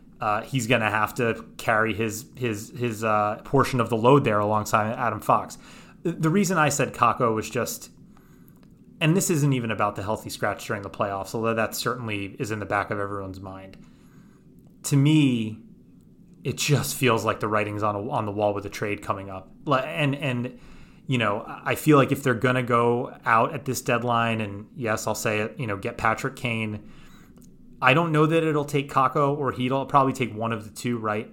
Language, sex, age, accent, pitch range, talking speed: English, male, 30-49, American, 110-135 Hz, 205 wpm